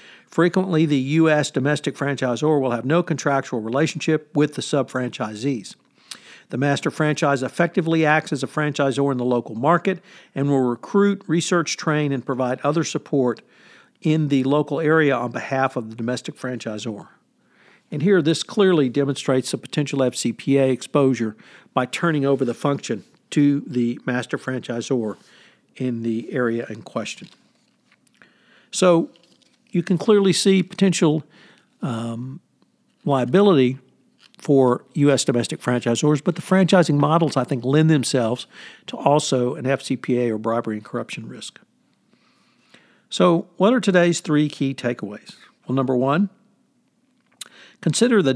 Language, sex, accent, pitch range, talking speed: English, male, American, 130-170 Hz, 135 wpm